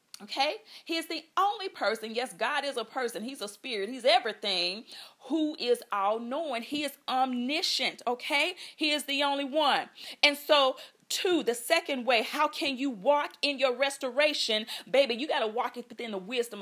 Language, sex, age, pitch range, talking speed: English, female, 40-59, 220-285 Hz, 185 wpm